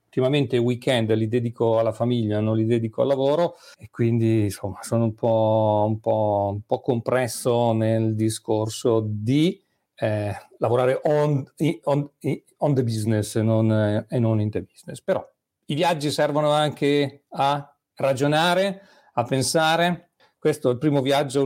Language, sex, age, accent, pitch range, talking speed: Italian, male, 40-59, native, 110-145 Hz, 155 wpm